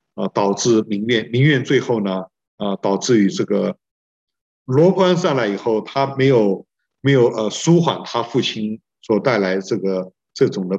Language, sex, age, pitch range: Chinese, male, 50-69, 105-145 Hz